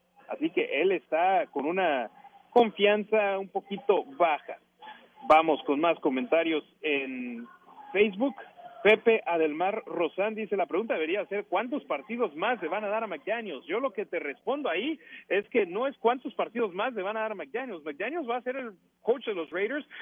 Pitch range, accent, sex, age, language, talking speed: 175-255 Hz, Mexican, male, 40-59, Spanish, 185 wpm